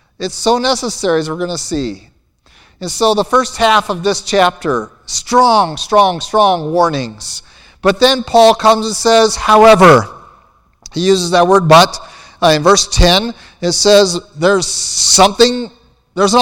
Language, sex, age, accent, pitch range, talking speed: English, male, 50-69, American, 145-230 Hz, 155 wpm